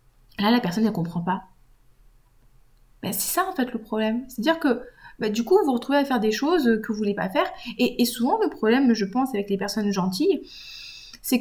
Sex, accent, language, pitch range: female, French, French, 195-255 Hz